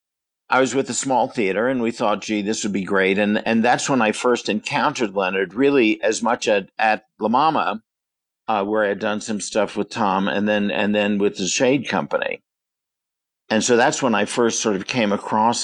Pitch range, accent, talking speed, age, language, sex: 100-115 Hz, American, 215 wpm, 50-69, English, male